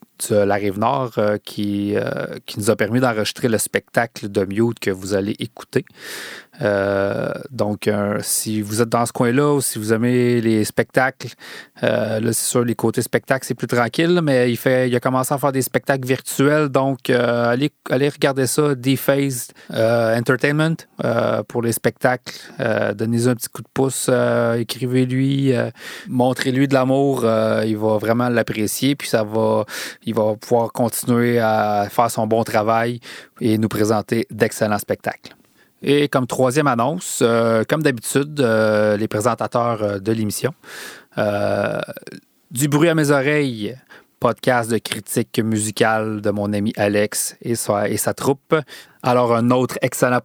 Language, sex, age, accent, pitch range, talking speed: French, male, 30-49, Canadian, 110-130 Hz, 160 wpm